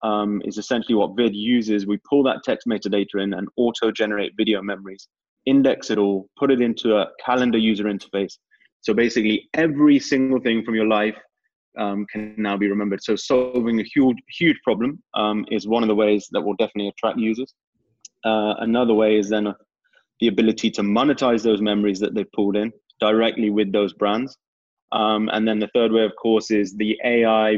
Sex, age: male, 20-39